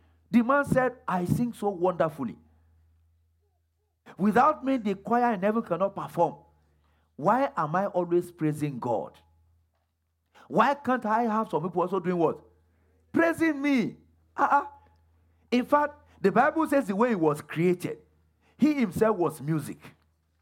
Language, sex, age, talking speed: English, male, 50-69, 140 wpm